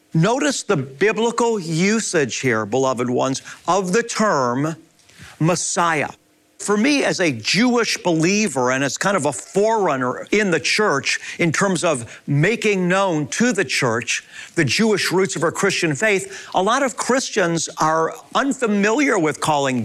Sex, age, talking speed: male, 50-69, 150 wpm